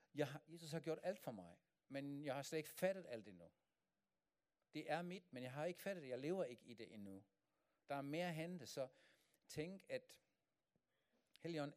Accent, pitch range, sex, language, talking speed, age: German, 110-145 Hz, male, Danish, 190 wpm, 50-69